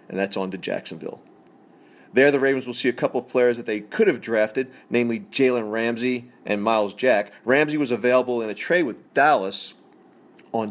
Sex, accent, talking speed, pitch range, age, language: male, American, 190 wpm, 105-130 Hz, 40-59, English